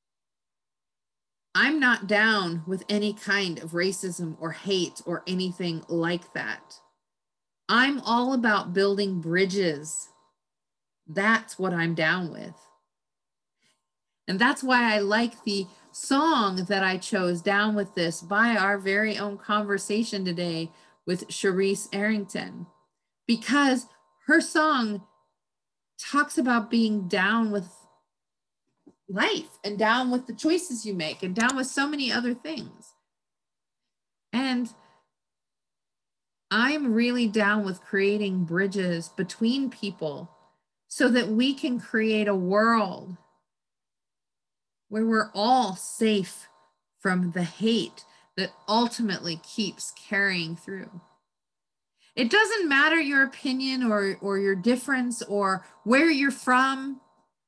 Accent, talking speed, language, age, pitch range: American, 115 wpm, English, 40-59, 155-230 Hz